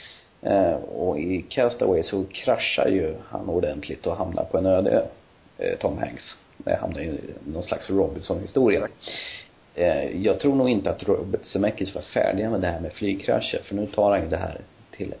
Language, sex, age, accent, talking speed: Swedish, male, 40-59, native, 165 wpm